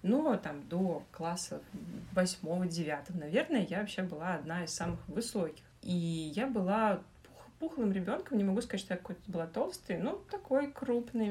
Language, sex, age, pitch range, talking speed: Russian, female, 30-49, 170-210 Hz, 155 wpm